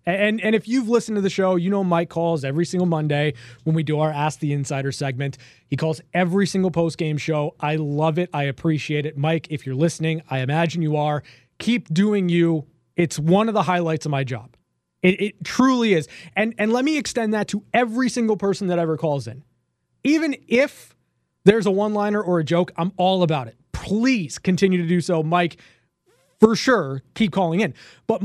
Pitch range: 155-220 Hz